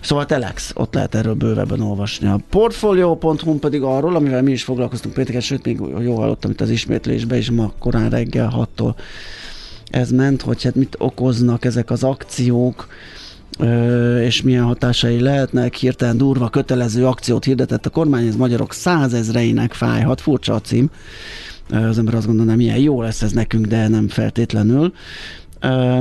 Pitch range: 110-130 Hz